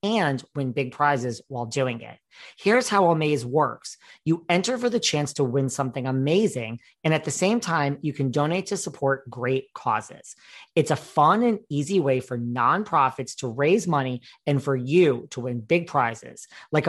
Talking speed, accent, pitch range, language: 180 wpm, American, 130-170 Hz, English